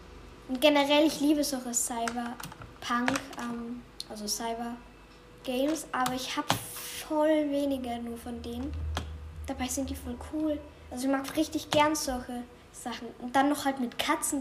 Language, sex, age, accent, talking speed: German, female, 10-29, German, 145 wpm